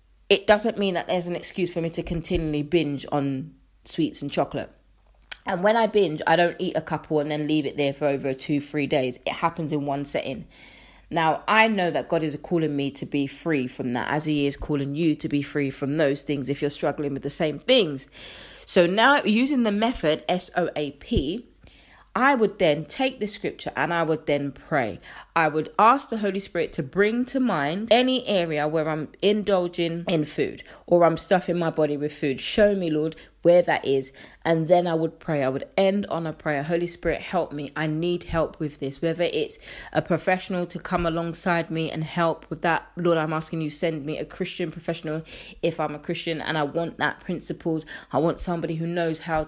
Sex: female